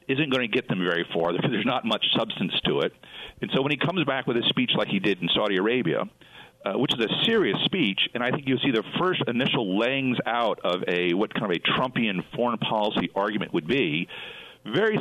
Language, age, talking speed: English, 50-69, 230 wpm